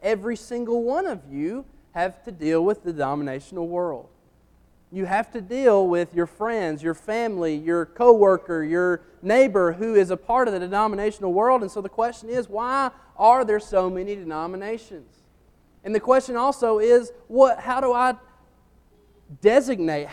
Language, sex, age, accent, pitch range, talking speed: English, male, 30-49, American, 170-235 Hz, 160 wpm